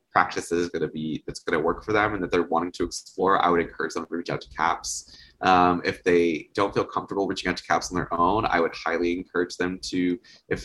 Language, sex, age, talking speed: English, male, 20-39, 260 wpm